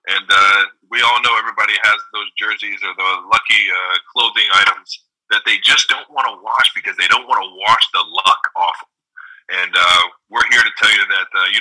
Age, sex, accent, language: 30-49, male, American, English